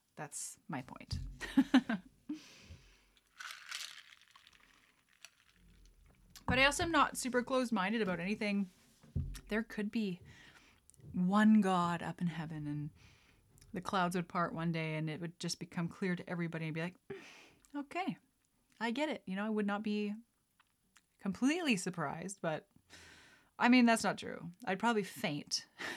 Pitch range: 185-265 Hz